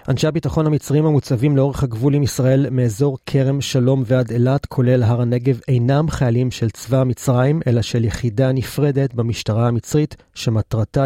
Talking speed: 145 wpm